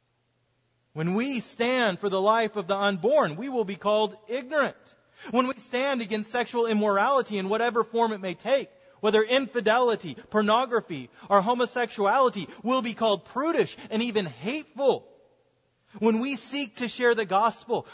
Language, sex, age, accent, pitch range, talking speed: English, male, 30-49, American, 200-250 Hz, 150 wpm